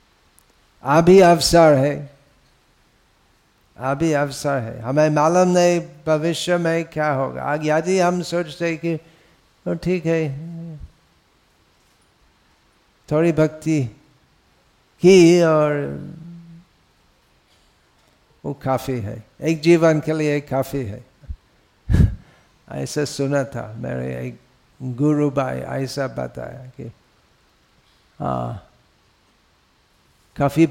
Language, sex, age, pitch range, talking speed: Hindi, male, 50-69, 125-165 Hz, 95 wpm